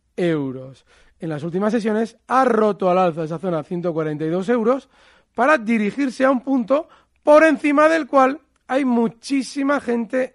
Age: 40-59